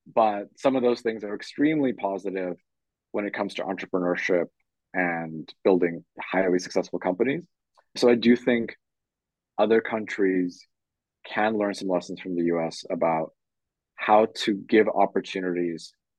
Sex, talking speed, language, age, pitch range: male, 135 wpm, English, 30-49, 95-115 Hz